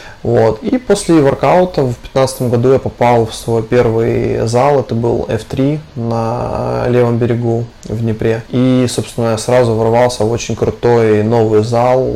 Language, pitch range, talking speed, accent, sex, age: Russian, 115-130 Hz, 150 wpm, native, male, 20-39